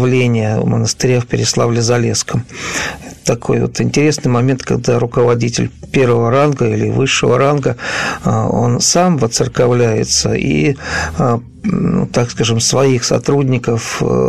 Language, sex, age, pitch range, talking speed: Russian, male, 50-69, 115-135 Hz, 95 wpm